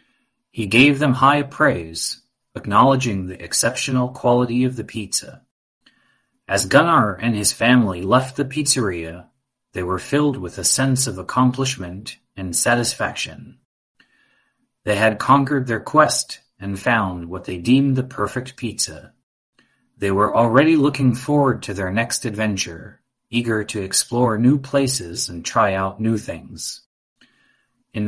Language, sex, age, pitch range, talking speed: English, male, 30-49, 100-130 Hz, 135 wpm